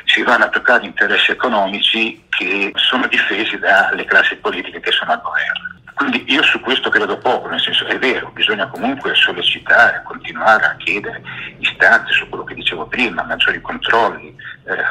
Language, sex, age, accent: Italian, male, 50-69, native